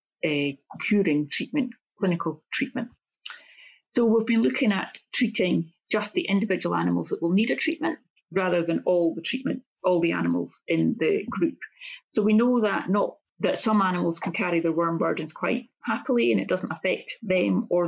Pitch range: 170-220 Hz